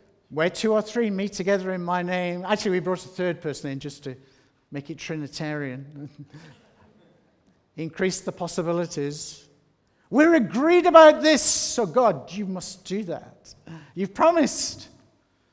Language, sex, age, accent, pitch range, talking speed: English, male, 50-69, British, 125-175 Hz, 140 wpm